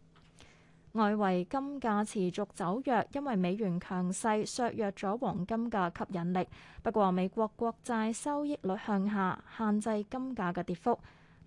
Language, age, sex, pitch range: Chinese, 20-39, female, 190-245 Hz